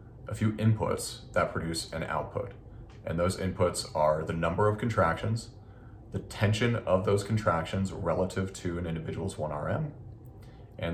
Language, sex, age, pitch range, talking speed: English, male, 40-59, 90-115 Hz, 145 wpm